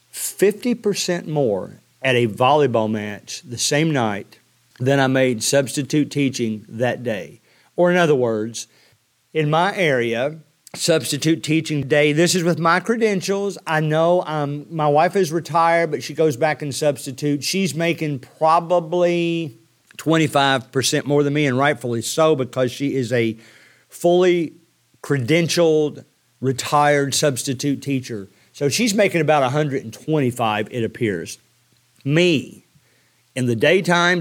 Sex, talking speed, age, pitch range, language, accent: male, 130 wpm, 50-69, 130-160 Hz, English, American